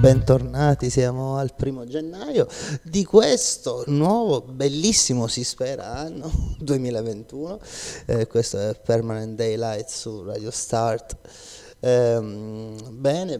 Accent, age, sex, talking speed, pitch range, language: native, 30-49, male, 105 wpm, 115-140 Hz, Italian